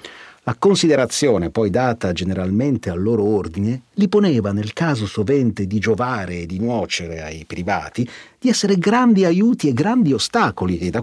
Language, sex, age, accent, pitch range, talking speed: Italian, male, 40-59, native, 105-165 Hz, 160 wpm